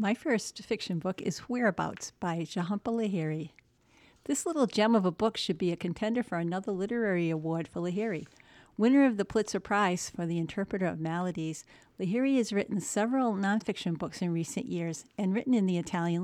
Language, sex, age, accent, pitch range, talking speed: English, female, 50-69, American, 175-225 Hz, 180 wpm